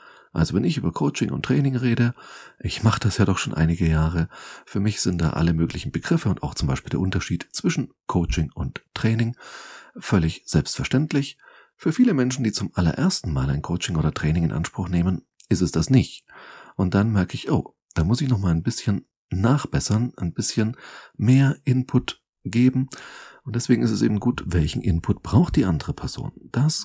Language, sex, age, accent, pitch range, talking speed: German, male, 40-59, German, 85-130 Hz, 185 wpm